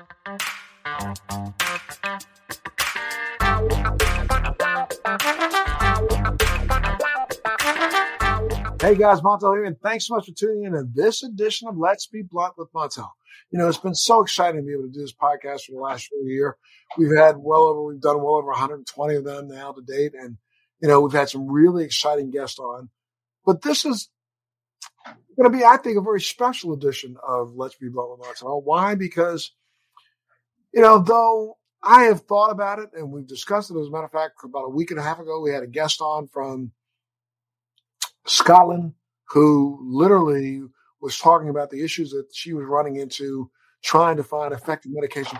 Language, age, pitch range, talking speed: English, 50-69, 135-175 Hz, 175 wpm